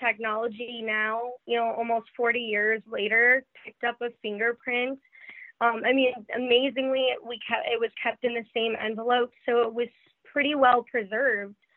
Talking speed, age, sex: 160 wpm, 20-39, female